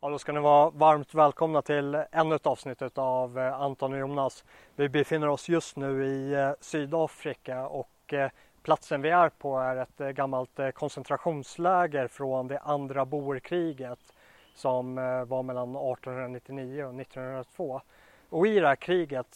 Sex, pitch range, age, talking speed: male, 130-145 Hz, 30-49, 140 wpm